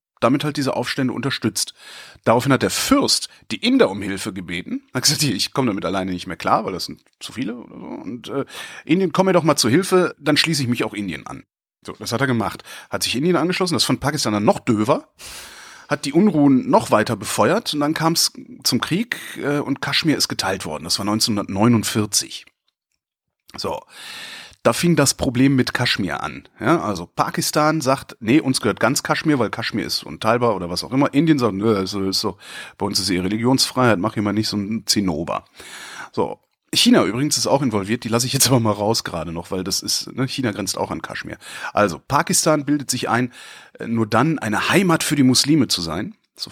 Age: 30-49